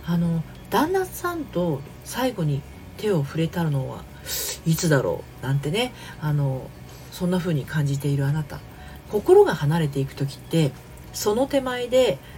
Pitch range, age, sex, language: 140-190 Hz, 40-59, female, Japanese